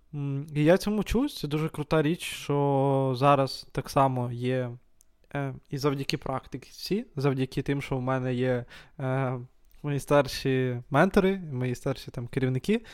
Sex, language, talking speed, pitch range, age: male, Ukrainian, 130 wpm, 135-155 Hz, 20-39